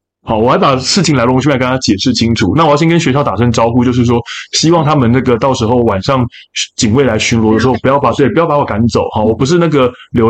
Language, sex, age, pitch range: Chinese, male, 20-39, 110-140 Hz